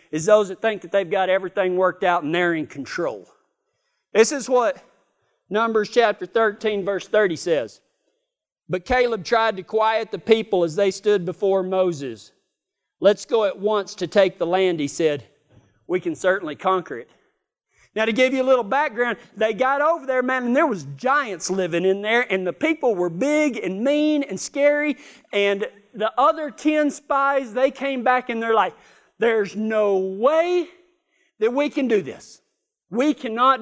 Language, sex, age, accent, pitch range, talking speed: English, male, 40-59, American, 190-270 Hz, 175 wpm